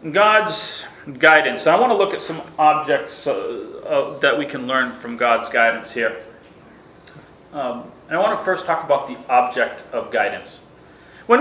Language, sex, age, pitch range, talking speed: English, male, 40-59, 185-270 Hz, 170 wpm